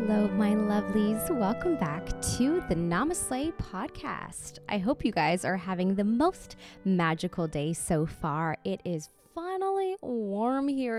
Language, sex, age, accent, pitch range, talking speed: English, female, 20-39, American, 175-245 Hz, 140 wpm